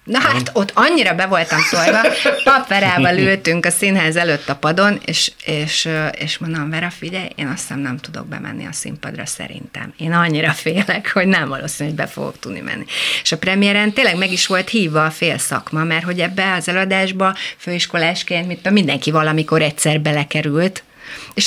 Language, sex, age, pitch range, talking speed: Hungarian, female, 30-49, 155-190 Hz, 180 wpm